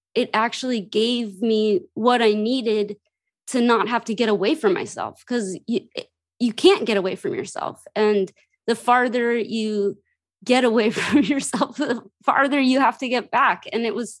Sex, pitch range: female, 205-245 Hz